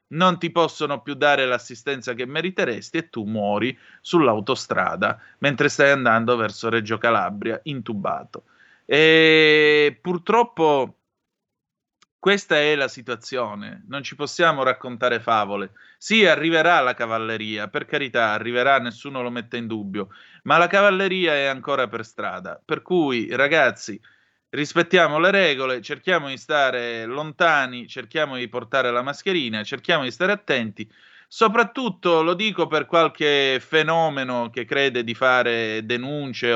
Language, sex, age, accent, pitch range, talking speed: Italian, male, 30-49, native, 120-150 Hz, 130 wpm